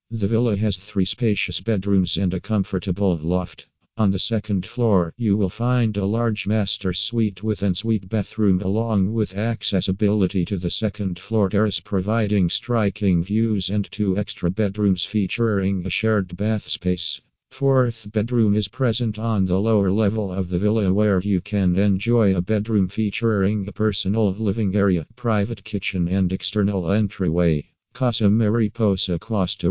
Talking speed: 150 wpm